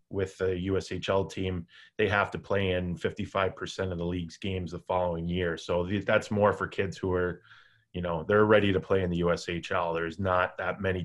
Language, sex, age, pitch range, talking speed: English, male, 20-39, 90-100 Hz, 200 wpm